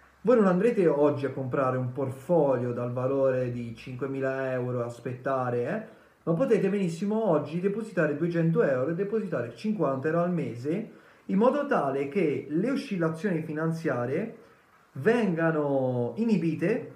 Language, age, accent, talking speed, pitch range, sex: Italian, 30-49, native, 130 wpm, 135-180 Hz, male